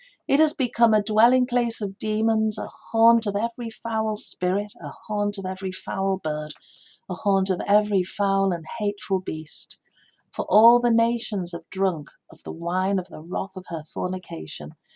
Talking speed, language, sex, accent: 170 wpm, English, female, British